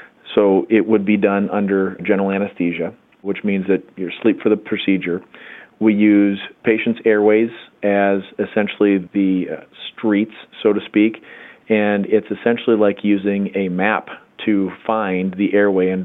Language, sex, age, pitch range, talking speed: English, male, 40-59, 95-110 Hz, 145 wpm